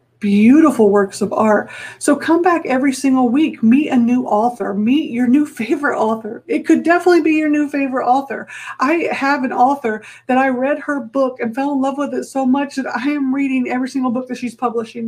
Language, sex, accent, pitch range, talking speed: English, female, American, 225-275 Hz, 215 wpm